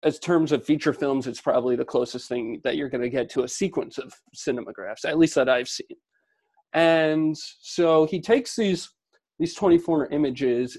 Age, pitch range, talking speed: 30-49, 130-155 Hz, 185 wpm